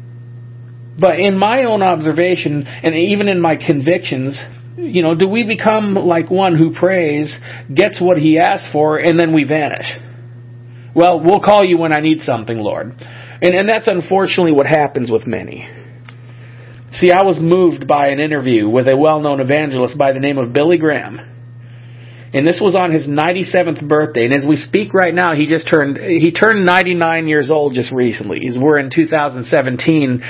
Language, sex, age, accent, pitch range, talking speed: English, male, 40-59, American, 120-180 Hz, 175 wpm